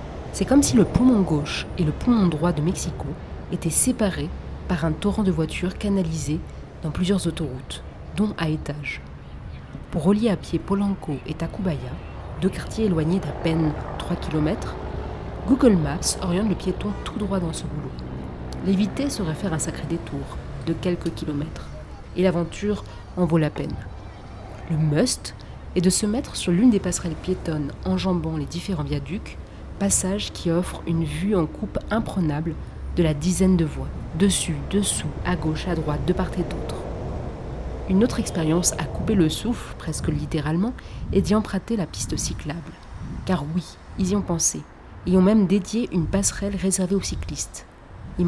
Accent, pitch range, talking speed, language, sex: French, 155-195 Hz, 165 wpm, French, female